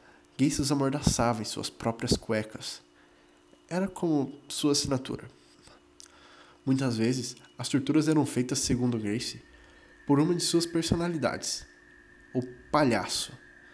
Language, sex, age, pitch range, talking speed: Portuguese, male, 20-39, 110-135 Hz, 115 wpm